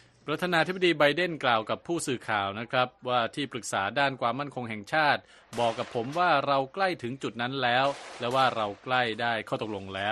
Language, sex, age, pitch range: Thai, male, 20-39, 105-135 Hz